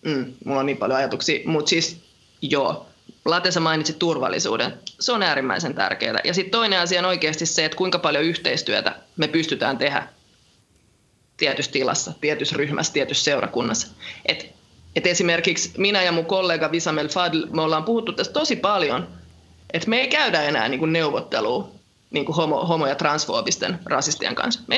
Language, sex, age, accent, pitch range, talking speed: Finnish, female, 20-39, native, 160-220 Hz, 155 wpm